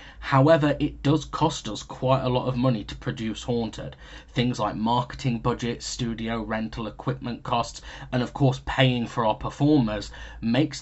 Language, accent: English, British